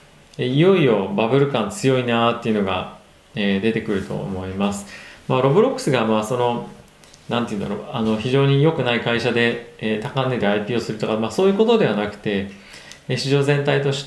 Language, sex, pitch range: Japanese, male, 110-140 Hz